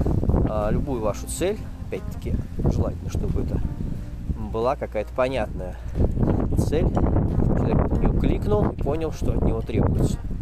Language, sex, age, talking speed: Russian, male, 20-39, 120 wpm